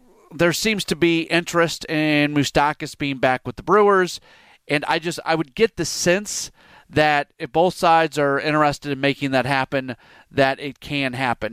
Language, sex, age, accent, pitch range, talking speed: English, male, 30-49, American, 135-165 Hz, 175 wpm